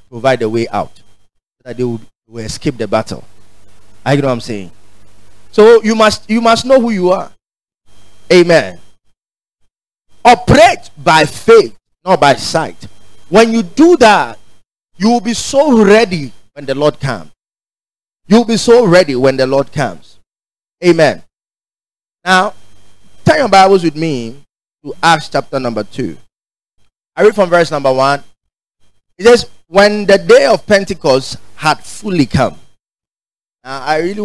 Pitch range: 120-185 Hz